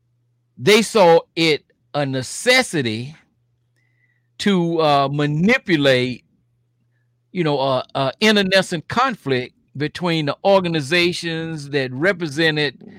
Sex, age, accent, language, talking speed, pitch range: male, 50-69, American, English, 90 wpm, 125-175 Hz